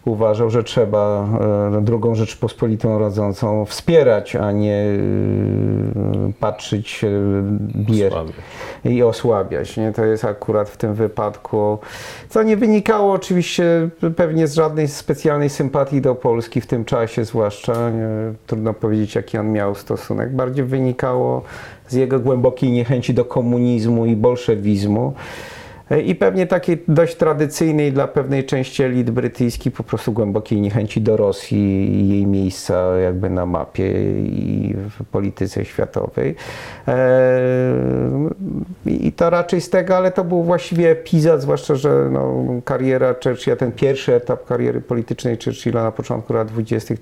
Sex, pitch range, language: male, 105-130 Hz, Polish